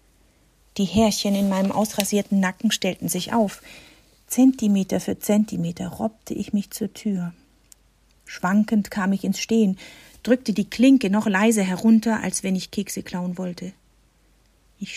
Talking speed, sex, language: 140 wpm, female, German